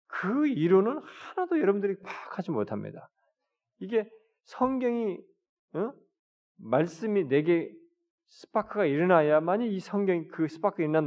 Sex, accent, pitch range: male, native, 150-235 Hz